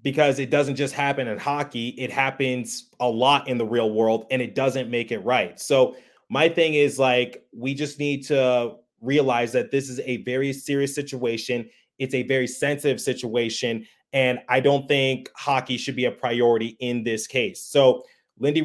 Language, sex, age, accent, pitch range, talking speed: English, male, 20-39, American, 125-140 Hz, 185 wpm